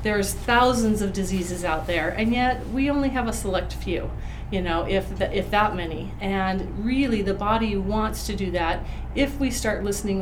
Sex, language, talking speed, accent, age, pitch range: female, English, 195 wpm, American, 40-59, 180-210 Hz